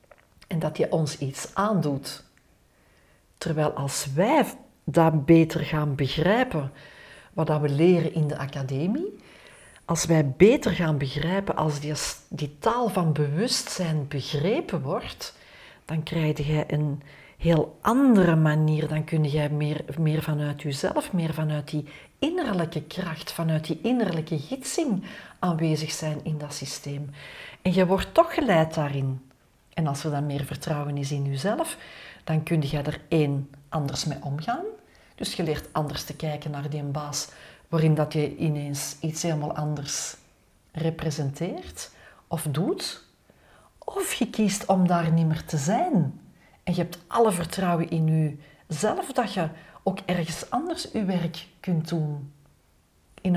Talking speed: 140 wpm